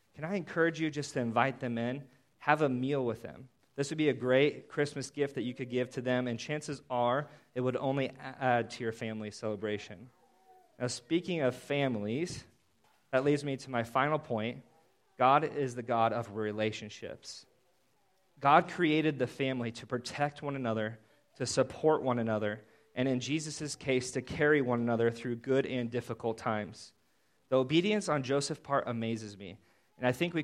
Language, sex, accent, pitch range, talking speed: English, male, American, 115-145 Hz, 180 wpm